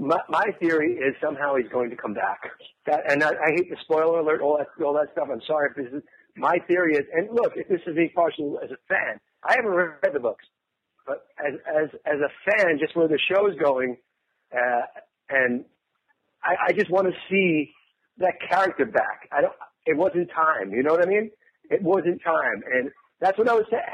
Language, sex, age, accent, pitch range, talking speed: English, male, 50-69, American, 140-195 Hz, 220 wpm